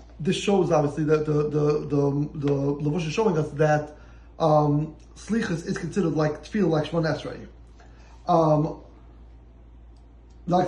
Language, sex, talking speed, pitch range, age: English, male, 135 wpm, 150-180 Hz, 30-49